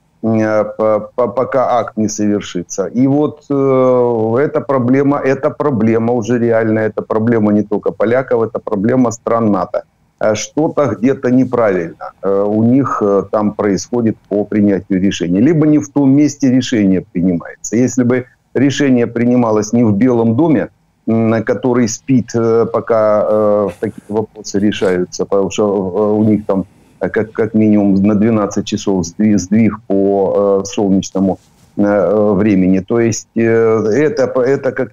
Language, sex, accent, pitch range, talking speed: Ukrainian, male, native, 105-125 Hz, 140 wpm